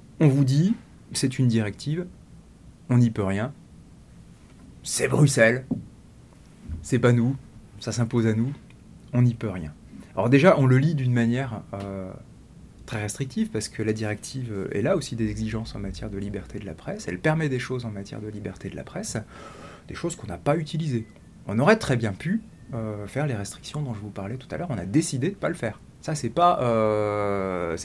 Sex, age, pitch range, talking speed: male, 30-49, 105-135 Hz, 205 wpm